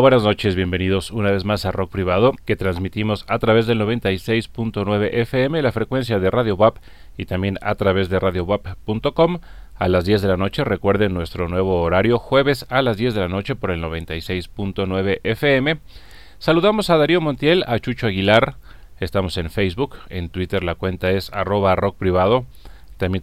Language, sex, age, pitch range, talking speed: Spanish, male, 40-59, 95-120 Hz, 175 wpm